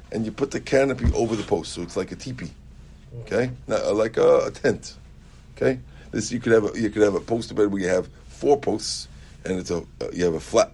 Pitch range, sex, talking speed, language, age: 80-125 Hz, male, 250 wpm, English, 50-69